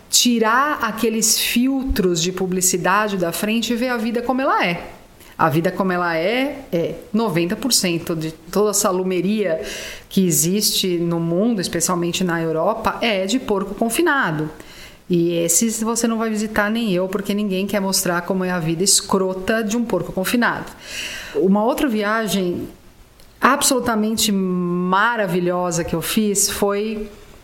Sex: female